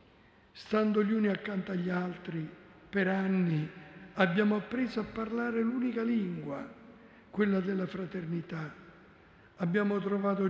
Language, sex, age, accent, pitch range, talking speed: Italian, male, 60-79, native, 165-195 Hz, 110 wpm